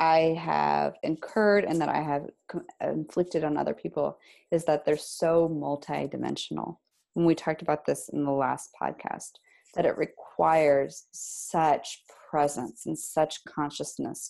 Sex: female